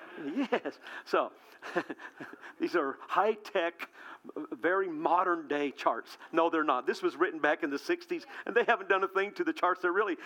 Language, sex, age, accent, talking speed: English, male, 50-69, American, 180 wpm